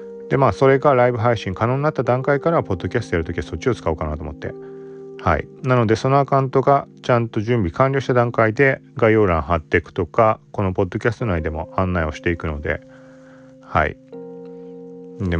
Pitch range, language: 85-130 Hz, Japanese